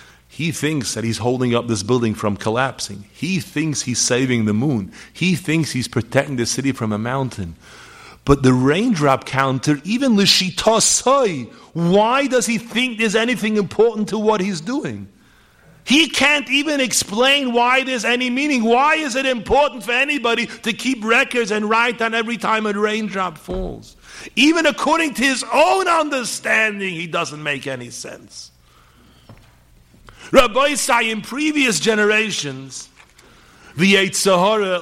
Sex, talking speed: male, 150 wpm